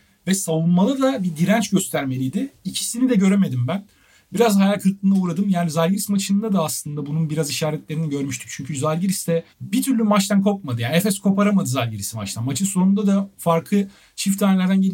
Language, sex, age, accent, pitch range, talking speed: Turkish, male, 40-59, native, 140-190 Hz, 160 wpm